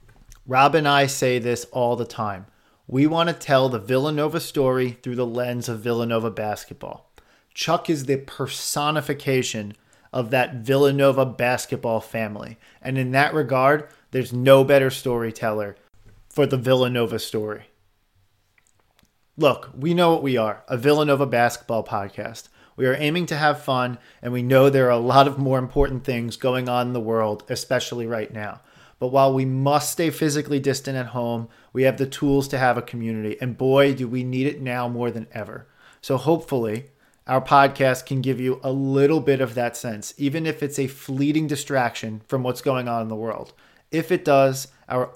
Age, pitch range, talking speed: 40-59, 120-140 Hz, 180 wpm